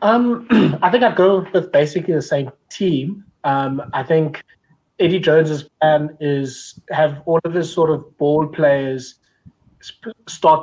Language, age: English, 20-39